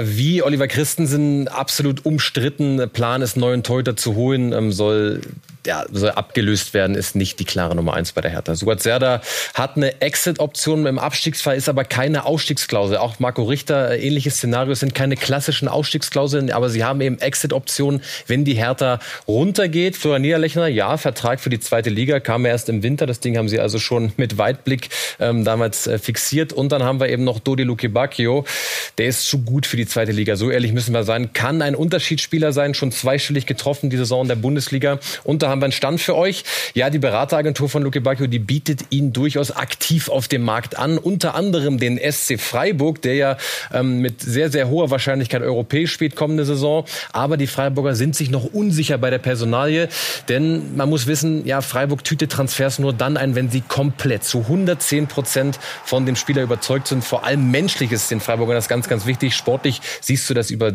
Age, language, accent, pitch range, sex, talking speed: 30-49, German, German, 120-145 Hz, male, 195 wpm